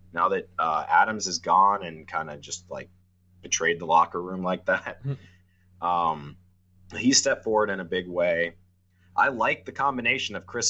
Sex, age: male, 30-49